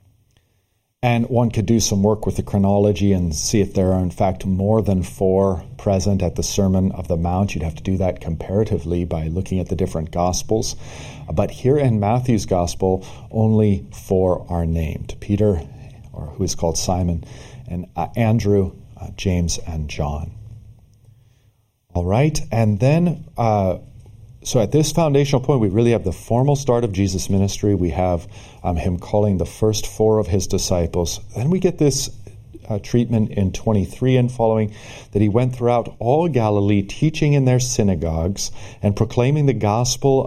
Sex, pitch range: male, 95-115 Hz